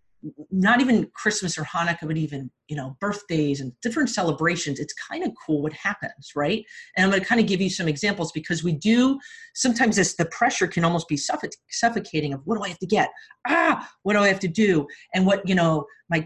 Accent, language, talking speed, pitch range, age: American, English, 220 wpm, 155-205 Hz, 40-59